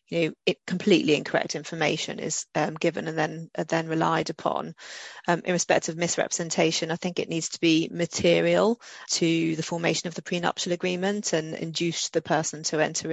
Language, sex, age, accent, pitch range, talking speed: English, female, 30-49, British, 160-180 Hz, 185 wpm